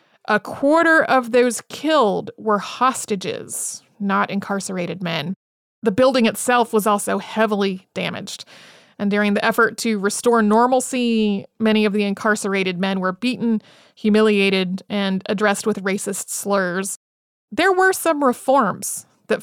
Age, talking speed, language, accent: 30-49, 130 wpm, English, American